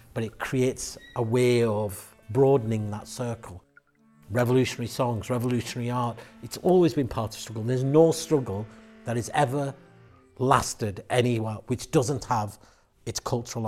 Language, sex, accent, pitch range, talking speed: English, male, British, 110-130 Hz, 140 wpm